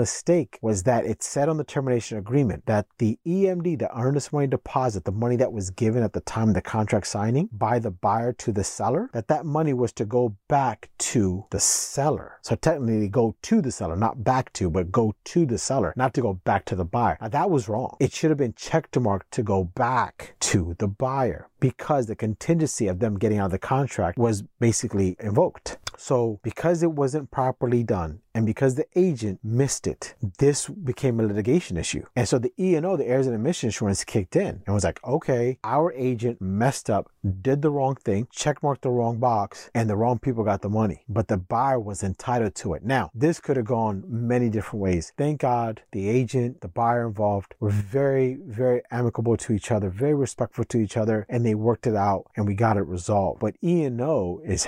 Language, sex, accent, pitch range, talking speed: English, male, American, 105-135 Hz, 210 wpm